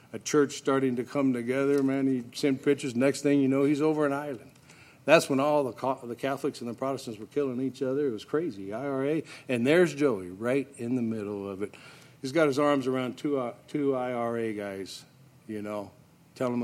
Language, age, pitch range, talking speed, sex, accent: English, 60-79, 115-145 Hz, 200 wpm, male, American